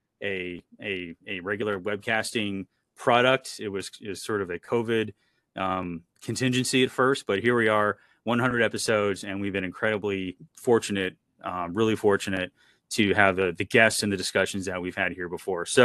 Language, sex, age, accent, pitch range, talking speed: English, male, 30-49, American, 100-130 Hz, 175 wpm